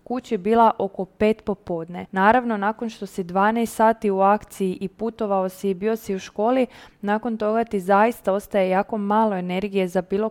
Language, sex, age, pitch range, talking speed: Croatian, female, 20-39, 190-230 Hz, 185 wpm